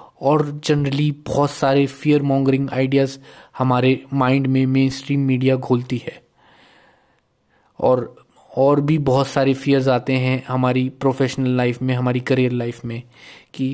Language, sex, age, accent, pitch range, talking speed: Hindi, male, 20-39, native, 130-145 Hz, 140 wpm